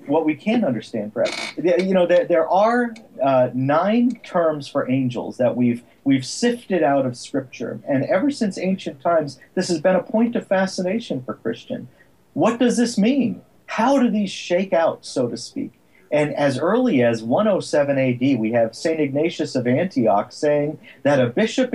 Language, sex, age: English, male, 40-59